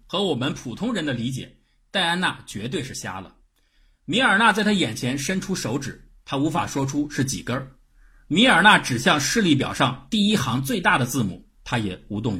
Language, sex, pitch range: Chinese, male, 105-155 Hz